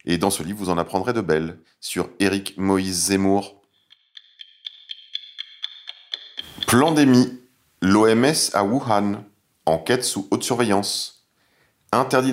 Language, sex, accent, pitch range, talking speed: French, male, French, 90-115 Hz, 105 wpm